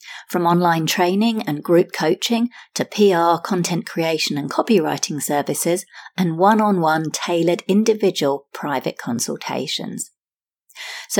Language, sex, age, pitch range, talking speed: English, female, 40-59, 165-215 Hz, 105 wpm